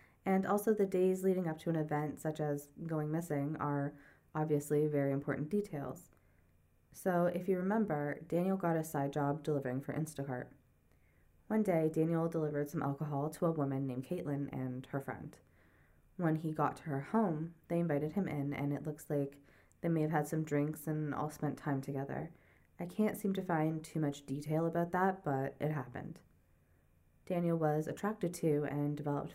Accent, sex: American, female